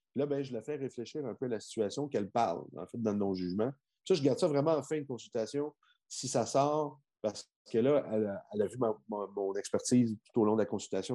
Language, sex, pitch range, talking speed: French, male, 100-130 Hz, 260 wpm